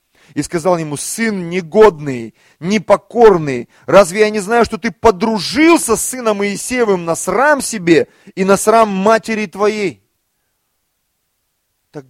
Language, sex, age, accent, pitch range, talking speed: Russian, male, 30-49, native, 115-165 Hz, 125 wpm